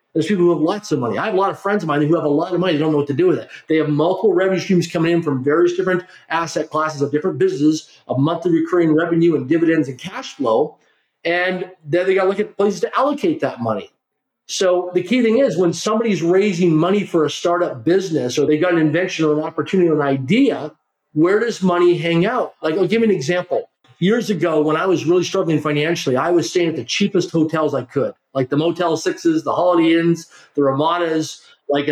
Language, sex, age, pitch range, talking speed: English, male, 40-59, 160-200 Hz, 240 wpm